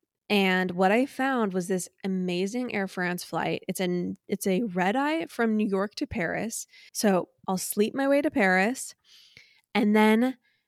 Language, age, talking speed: English, 20-39, 155 wpm